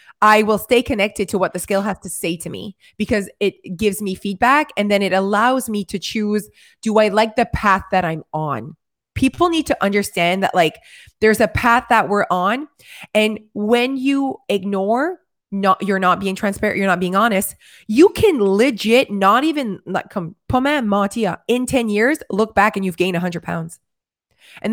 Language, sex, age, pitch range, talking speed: English, female, 20-39, 195-245 Hz, 185 wpm